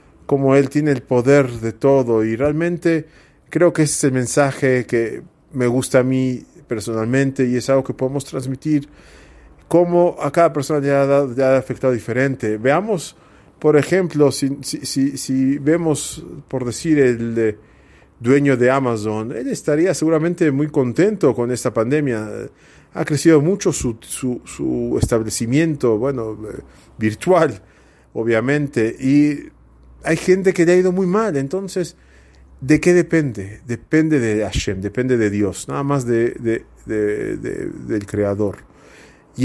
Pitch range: 110-145 Hz